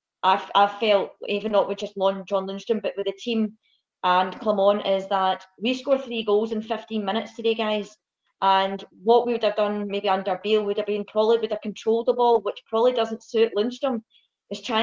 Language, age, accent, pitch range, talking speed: English, 20-39, British, 205-235 Hz, 205 wpm